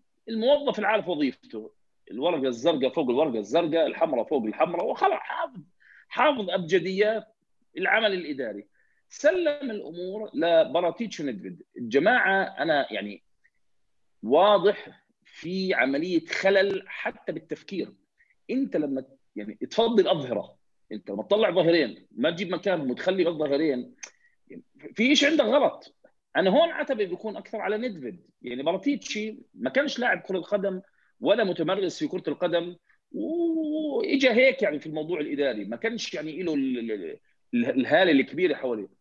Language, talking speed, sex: Arabic, 125 wpm, male